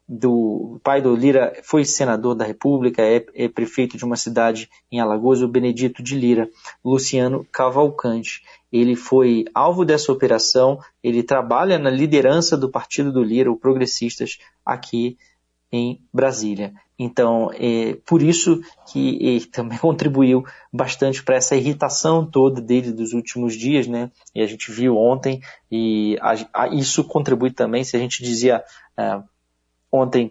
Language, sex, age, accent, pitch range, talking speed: Portuguese, male, 20-39, Brazilian, 120-140 Hz, 150 wpm